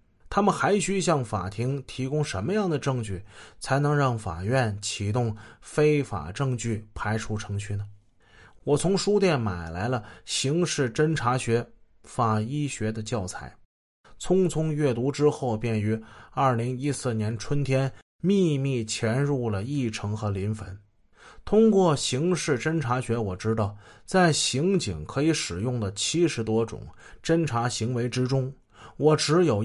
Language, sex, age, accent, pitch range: Chinese, male, 20-39, native, 110-145 Hz